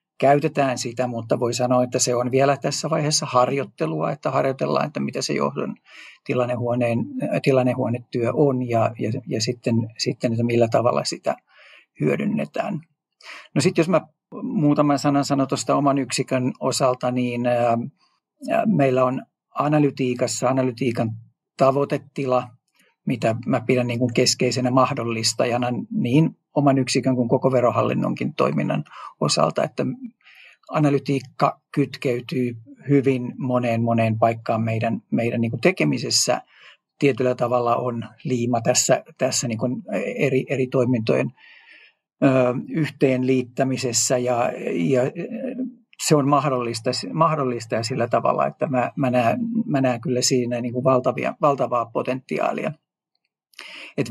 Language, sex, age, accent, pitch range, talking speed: Finnish, male, 50-69, native, 120-145 Hz, 115 wpm